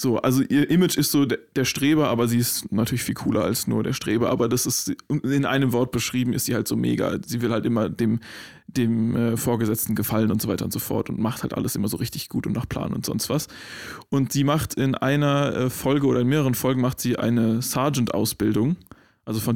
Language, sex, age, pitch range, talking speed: German, male, 20-39, 120-140 Hz, 225 wpm